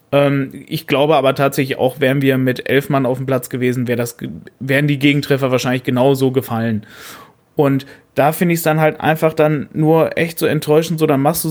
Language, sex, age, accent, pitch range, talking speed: German, male, 30-49, German, 140-160 Hz, 205 wpm